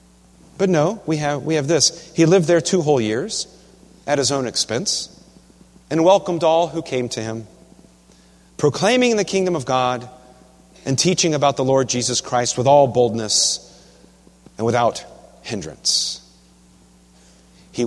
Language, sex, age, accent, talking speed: English, male, 40-59, American, 140 wpm